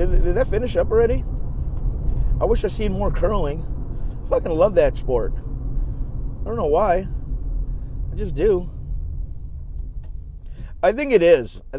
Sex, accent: male, American